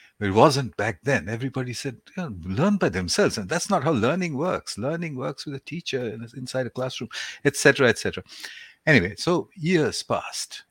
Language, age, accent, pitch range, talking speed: English, 60-79, Indian, 105-140 Hz, 170 wpm